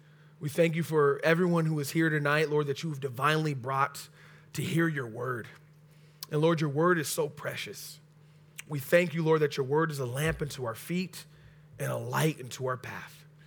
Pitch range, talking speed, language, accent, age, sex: 140-160 Hz, 200 wpm, English, American, 30-49, male